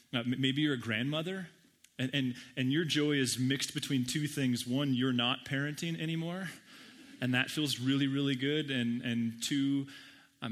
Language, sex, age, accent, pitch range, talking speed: English, male, 30-49, American, 115-130 Hz, 170 wpm